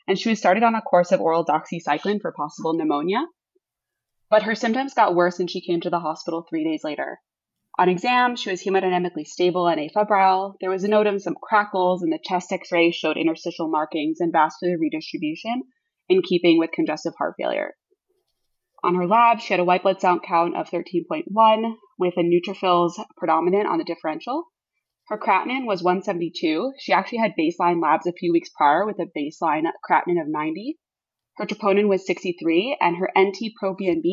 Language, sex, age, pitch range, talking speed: English, female, 20-39, 175-220 Hz, 180 wpm